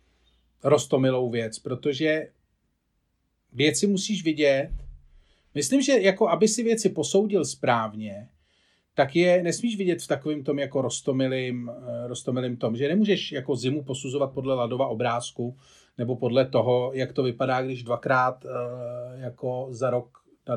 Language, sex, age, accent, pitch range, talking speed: Czech, male, 40-59, native, 120-175 Hz, 130 wpm